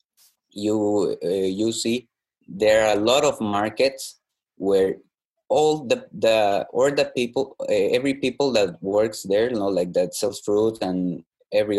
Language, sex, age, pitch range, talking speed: English, male, 20-39, 95-120 Hz, 155 wpm